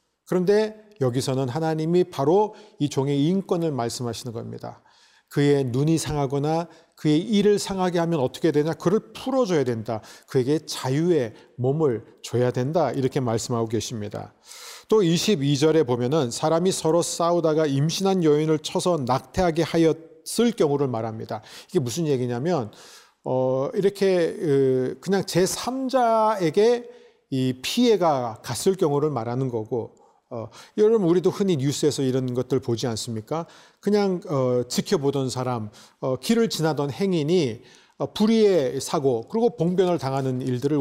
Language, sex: Korean, male